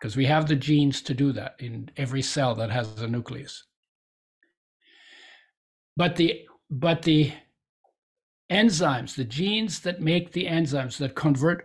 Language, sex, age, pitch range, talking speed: English, male, 60-79, 140-180 Hz, 145 wpm